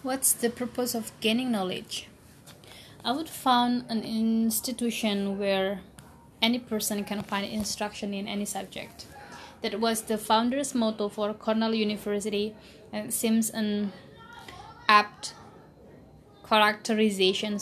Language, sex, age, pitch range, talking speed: Indonesian, female, 20-39, 205-230 Hz, 115 wpm